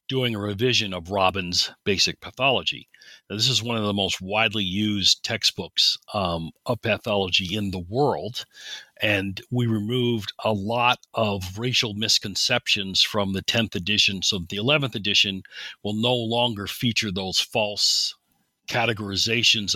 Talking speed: 135 wpm